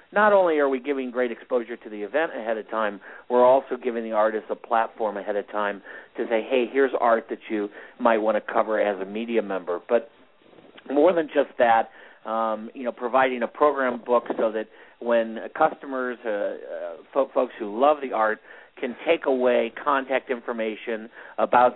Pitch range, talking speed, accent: 110-130 Hz, 185 wpm, American